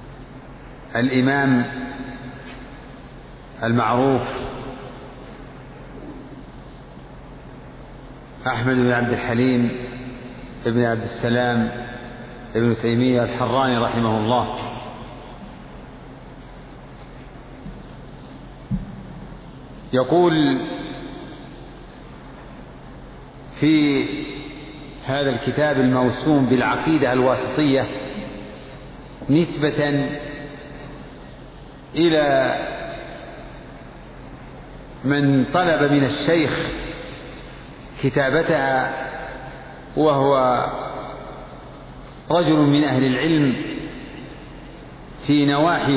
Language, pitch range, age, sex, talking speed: Arabic, 125-145 Hz, 50-69, male, 45 wpm